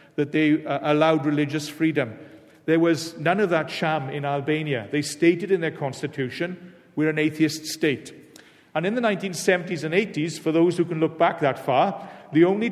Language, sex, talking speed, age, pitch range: English, male, 180 wpm, 50-69, 155-185 Hz